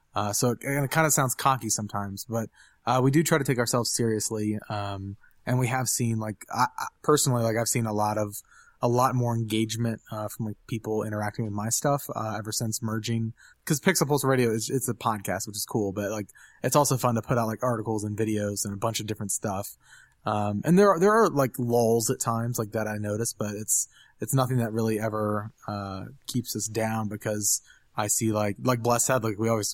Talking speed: 230 wpm